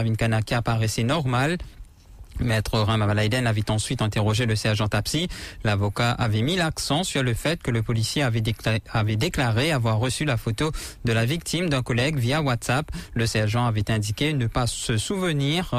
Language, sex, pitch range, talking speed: English, male, 115-145 Hz, 170 wpm